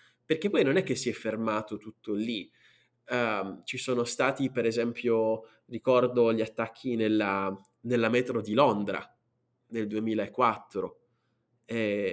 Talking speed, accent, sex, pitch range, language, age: 135 wpm, native, male, 115-140 Hz, Italian, 20-39